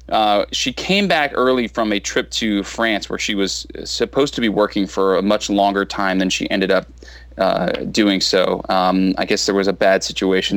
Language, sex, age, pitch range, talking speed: English, male, 30-49, 95-120 Hz, 210 wpm